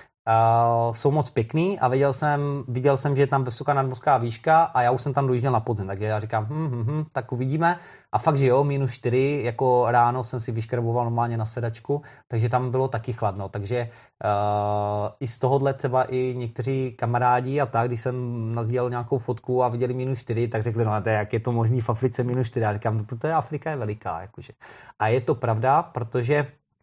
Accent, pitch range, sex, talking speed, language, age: native, 120-150 Hz, male, 210 wpm, Czech, 30-49